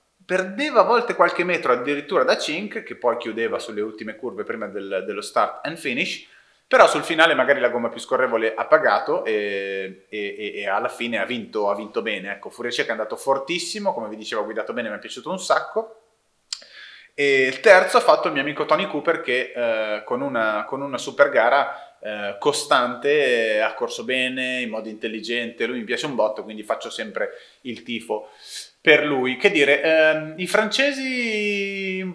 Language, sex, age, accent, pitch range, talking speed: Italian, male, 30-49, native, 115-190 Hz, 190 wpm